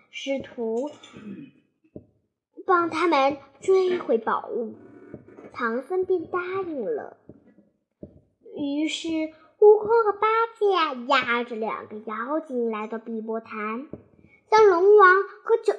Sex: male